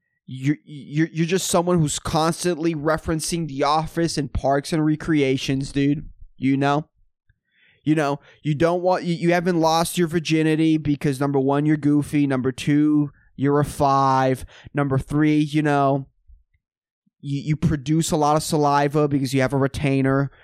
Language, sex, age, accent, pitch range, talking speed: English, male, 20-39, American, 140-165 Hz, 160 wpm